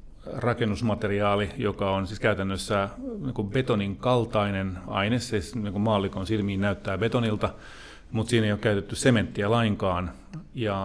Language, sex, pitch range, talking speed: Finnish, male, 95-110 Hz, 115 wpm